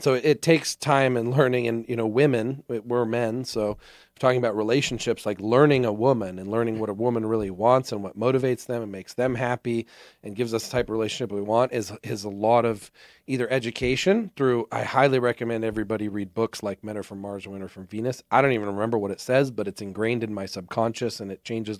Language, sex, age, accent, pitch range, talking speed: English, male, 40-59, American, 105-130 Hz, 230 wpm